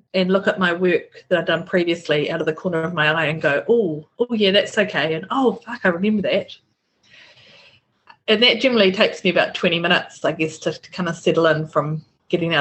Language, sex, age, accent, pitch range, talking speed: English, female, 30-49, Australian, 155-210 Hz, 230 wpm